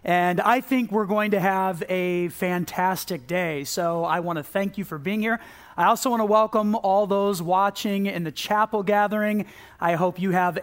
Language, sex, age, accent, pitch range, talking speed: English, male, 40-59, American, 180-210 Hz, 200 wpm